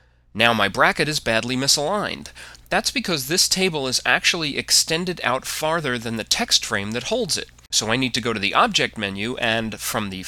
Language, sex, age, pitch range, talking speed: English, male, 30-49, 105-150 Hz, 200 wpm